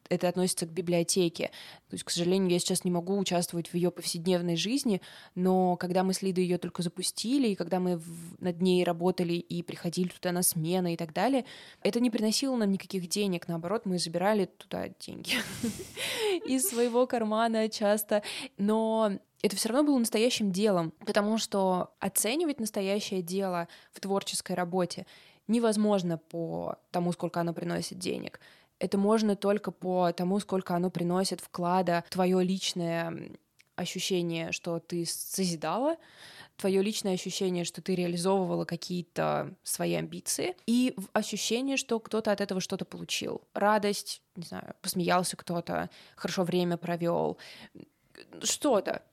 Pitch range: 175-210 Hz